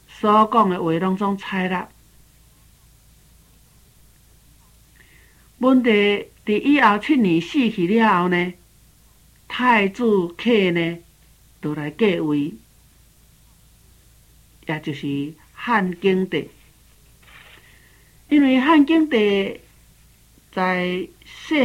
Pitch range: 165-210 Hz